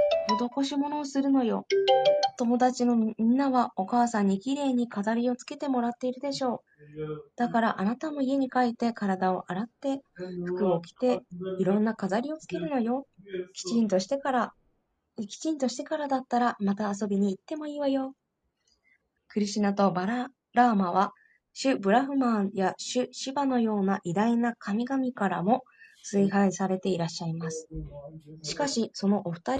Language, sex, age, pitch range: Japanese, female, 20-39, 190-255 Hz